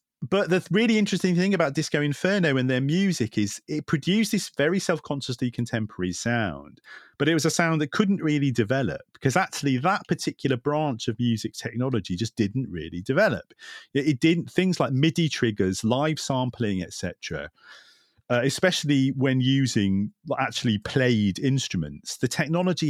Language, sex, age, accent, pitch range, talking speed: English, male, 40-59, British, 105-150 Hz, 155 wpm